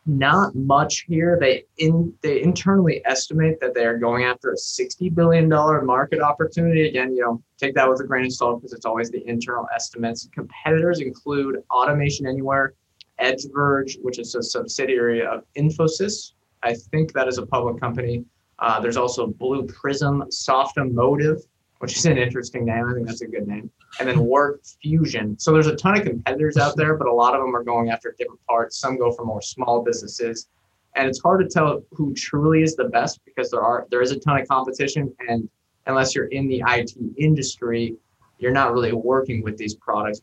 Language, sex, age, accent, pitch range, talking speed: English, male, 20-39, American, 115-145 Hz, 195 wpm